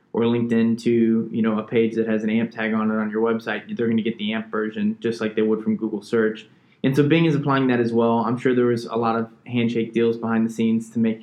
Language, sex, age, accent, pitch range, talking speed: English, male, 20-39, American, 110-125 Hz, 285 wpm